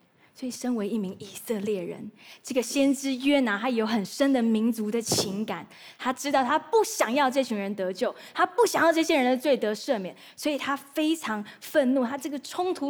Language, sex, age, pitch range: Chinese, female, 20-39, 210-280 Hz